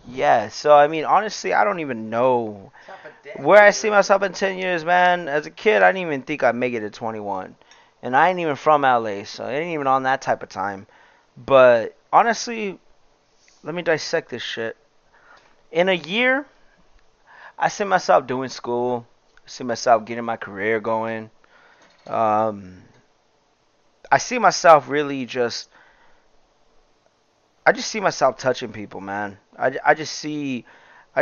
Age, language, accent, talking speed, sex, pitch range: 30-49, English, American, 160 wpm, male, 120-155 Hz